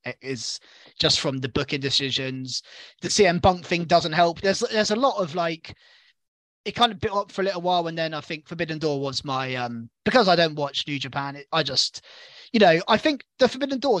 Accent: British